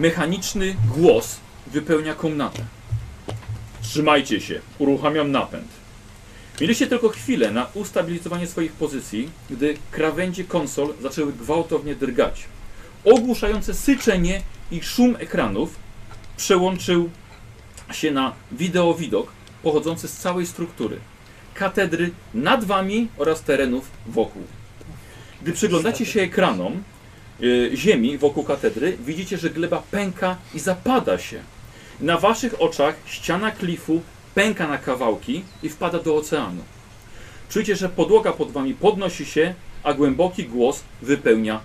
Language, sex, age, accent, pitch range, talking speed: Polish, male, 40-59, native, 115-185 Hz, 110 wpm